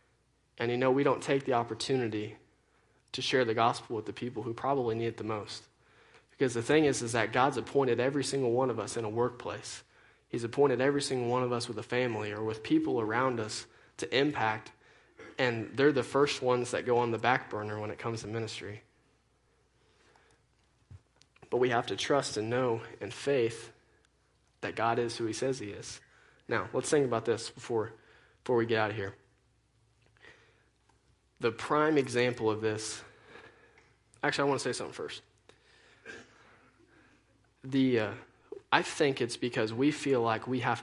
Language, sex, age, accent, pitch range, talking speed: English, male, 20-39, American, 110-130 Hz, 180 wpm